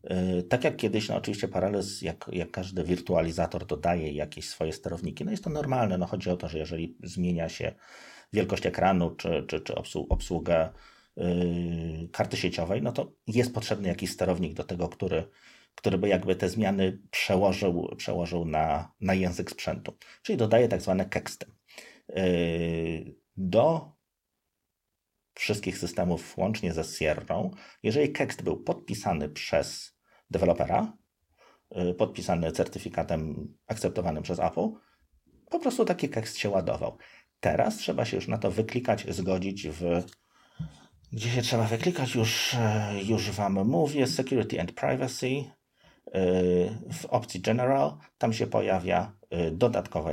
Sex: male